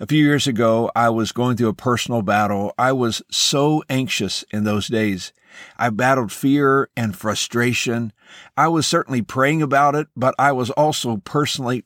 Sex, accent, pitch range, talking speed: male, American, 110-135 Hz, 170 wpm